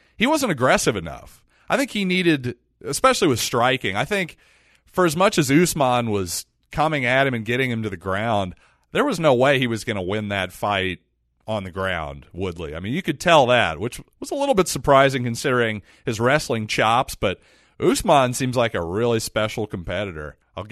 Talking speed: 195 wpm